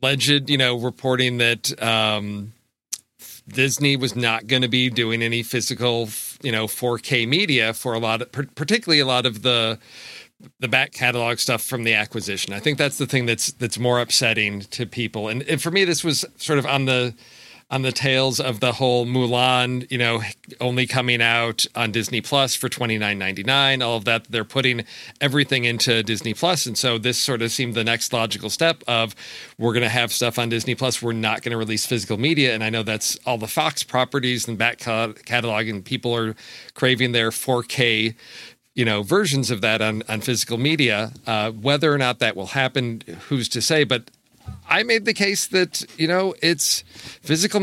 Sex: male